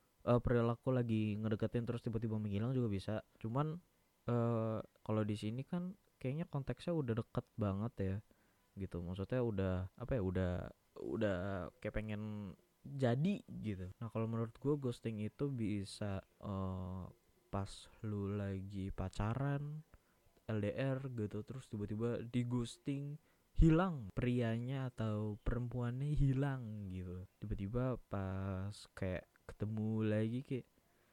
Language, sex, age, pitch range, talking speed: Indonesian, male, 20-39, 100-135 Hz, 120 wpm